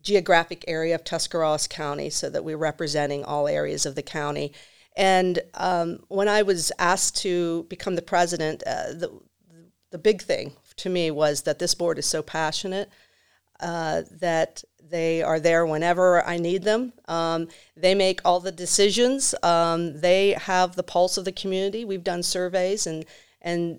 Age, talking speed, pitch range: 50-69, 165 wpm, 170-200 Hz